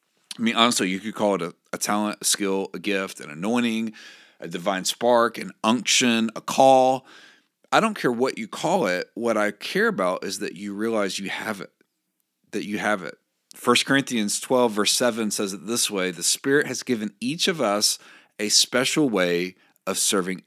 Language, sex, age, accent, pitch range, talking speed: English, male, 40-59, American, 100-130 Hz, 195 wpm